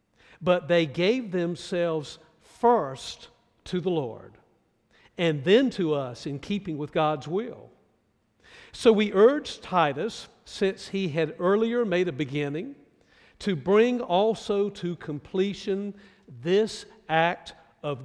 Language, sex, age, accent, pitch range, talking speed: English, male, 50-69, American, 155-200 Hz, 120 wpm